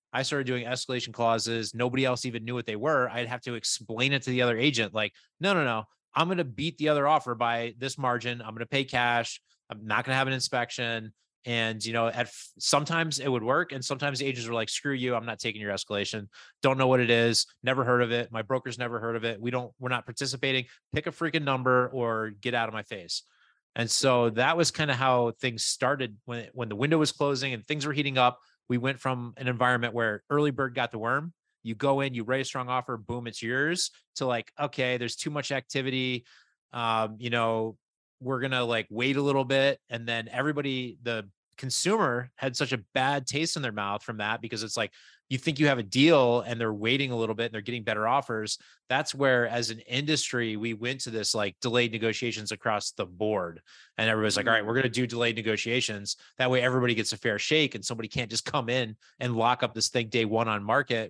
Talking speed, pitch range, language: 235 wpm, 115-135 Hz, English